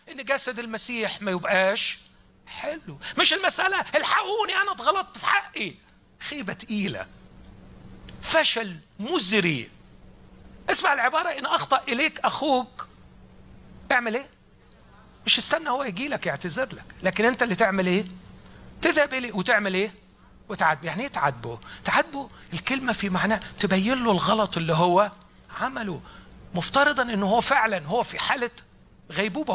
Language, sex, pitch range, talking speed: Arabic, male, 200-280 Hz, 130 wpm